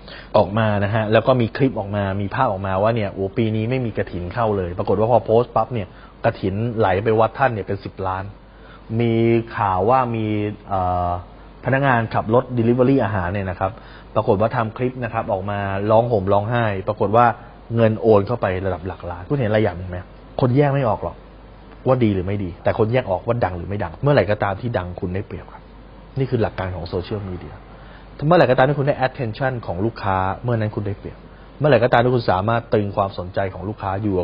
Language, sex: Thai, male